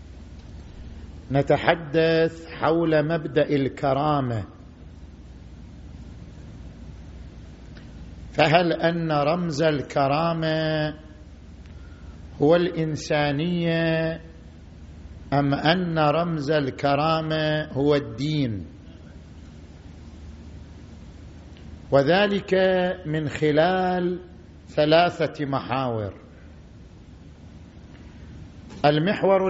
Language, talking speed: Arabic, 45 wpm